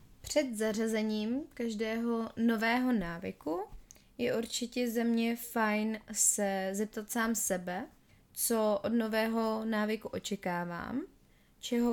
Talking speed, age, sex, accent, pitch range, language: 100 wpm, 20-39, female, native, 195-230 Hz, Czech